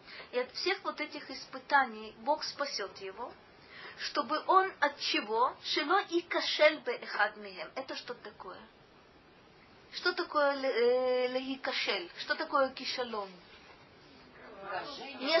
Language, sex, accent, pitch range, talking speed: Russian, female, native, 235-290 Hz, 115 wpm